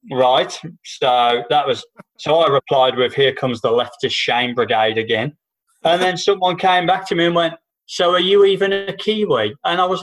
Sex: male